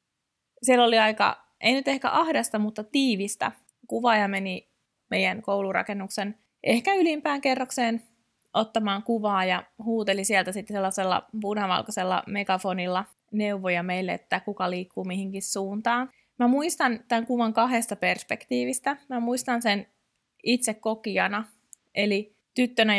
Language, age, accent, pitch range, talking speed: Finnish, 20-39, native, 190-225 Hz, 115 wpm